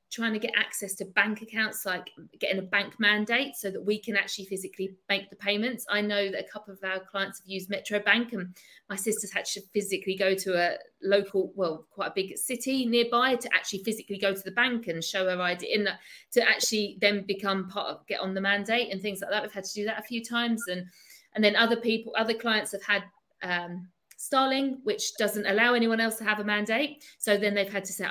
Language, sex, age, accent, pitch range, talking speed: English, female, 40-59, British, 200-260 Hz, 235 wpm